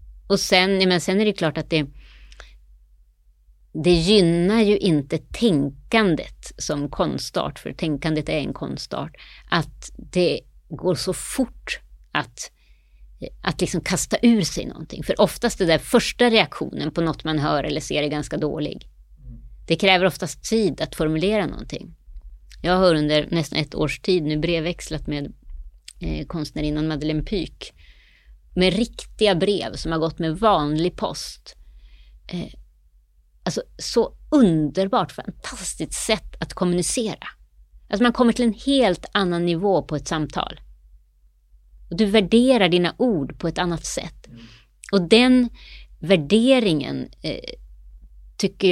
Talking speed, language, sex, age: 135 wpm, Swedish, female, 30-49